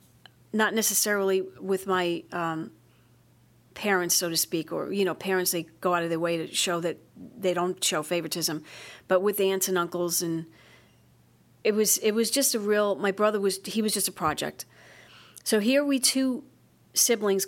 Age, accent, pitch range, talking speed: 40-59, American, 180-210 Hz, 180 wpm